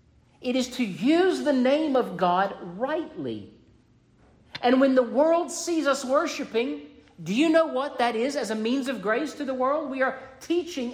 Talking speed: 180 wpm